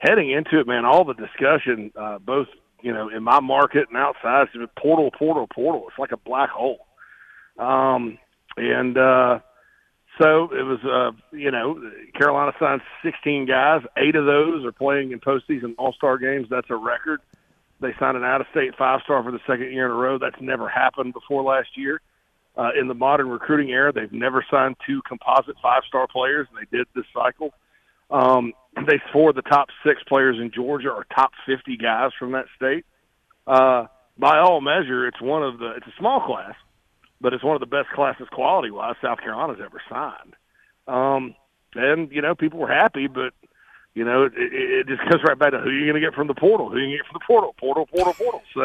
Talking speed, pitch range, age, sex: 195 wpm, 125-150 Hz, 40-59, male